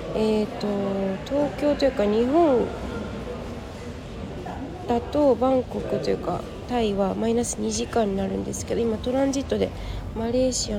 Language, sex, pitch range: Japanese, female, 195-235 Hz